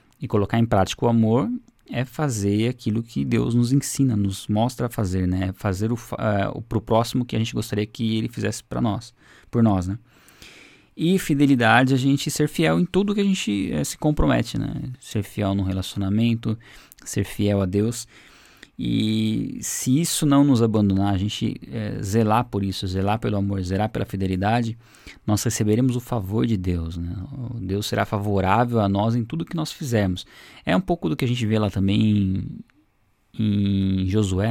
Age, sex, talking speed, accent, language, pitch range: 20-39, male, 190 wpm, Brazilian, Portuguese, 100-120 Hz